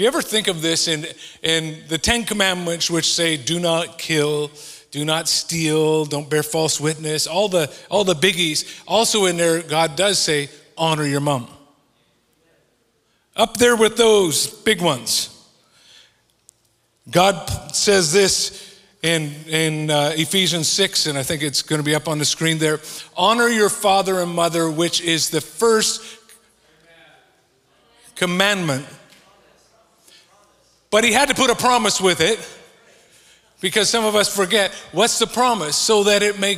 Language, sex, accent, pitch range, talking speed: English, male, American, 150-195 Hz, 155 wpm